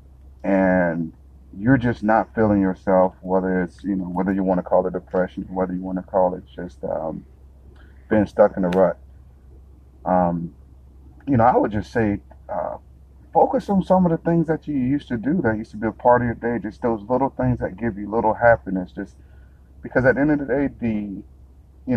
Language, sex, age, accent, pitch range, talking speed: English, male, 30-49, American, 75-115 Hz, 210 wpm